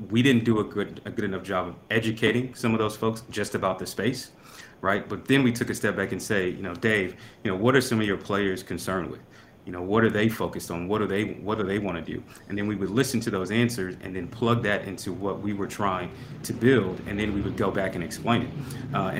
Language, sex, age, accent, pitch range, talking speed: English, male, 30-49, American, 95-110 Hz, 270 wpm